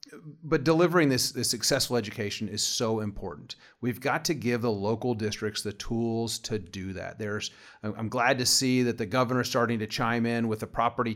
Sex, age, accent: male, 40-59, American